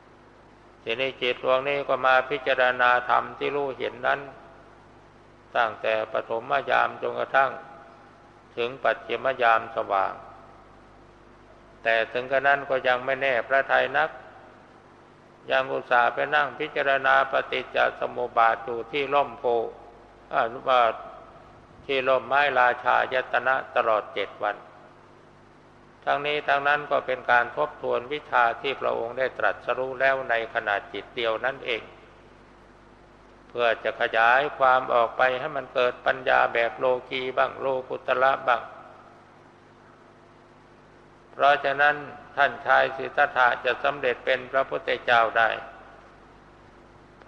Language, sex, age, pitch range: Thai, male, 60-79, 115-135 Hz